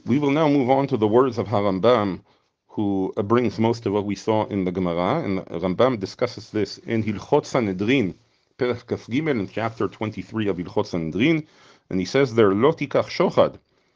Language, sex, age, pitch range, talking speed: English, male, 40-59, 105-135 Hz, 155 wpm